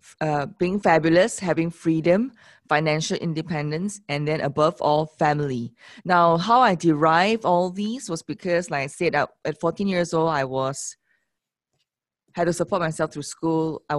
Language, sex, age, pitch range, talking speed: English, female, 20-39, 150-190 Hz, 155 wpm